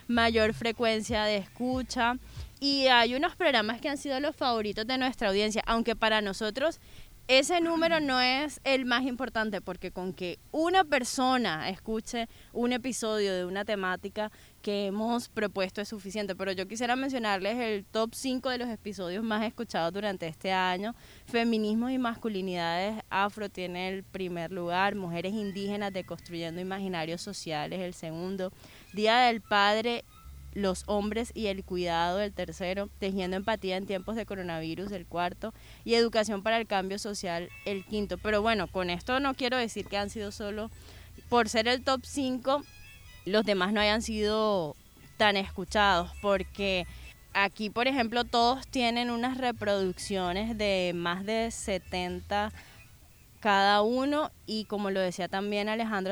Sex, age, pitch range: female, 20-39, 190-235 Hz